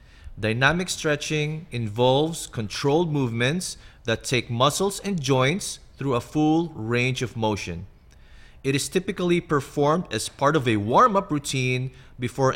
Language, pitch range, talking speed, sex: English, 110-150 Hz, 130 wpm, male